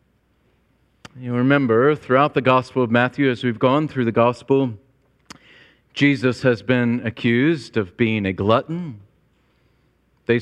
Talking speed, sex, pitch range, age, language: 125 wpm, male, 115-150 Hz, 40-59, English